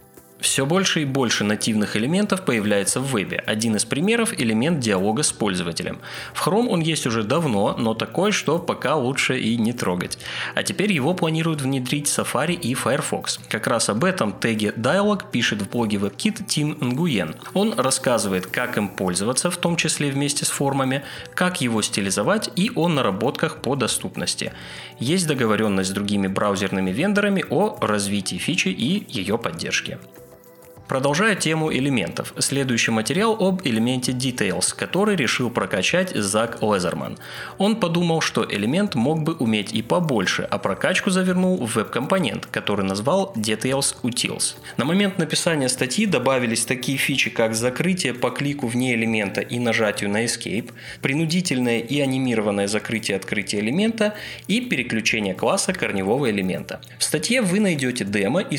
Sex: male